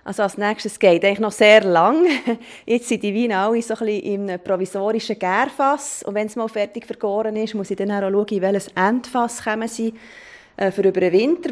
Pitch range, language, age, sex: 190-235 Hz, German, 30-49, female